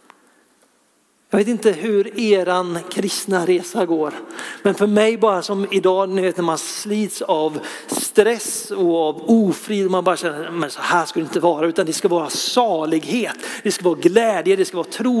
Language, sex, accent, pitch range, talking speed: Swedish, male, native, 165-205 Hz, 170 wpm